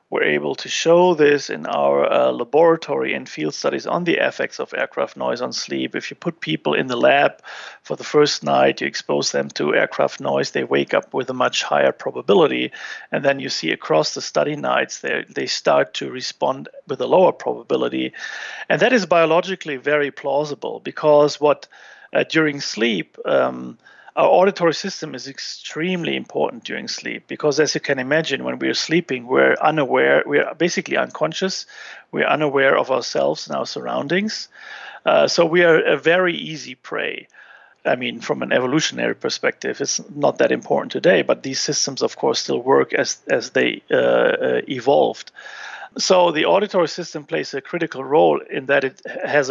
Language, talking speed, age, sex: English, 175 wpm, 40-59, male